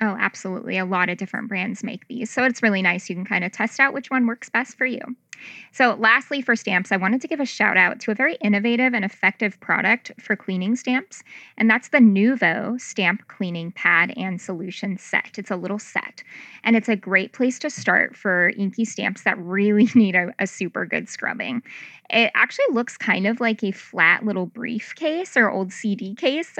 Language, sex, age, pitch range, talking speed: English, female, 20-39, 195-245 Hz, 210 wpm